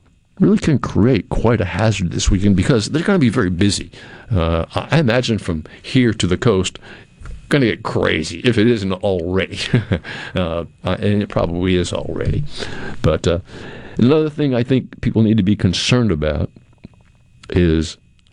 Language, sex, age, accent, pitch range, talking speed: English, male, 60-79, American, 85-105 Hz, 165 wpm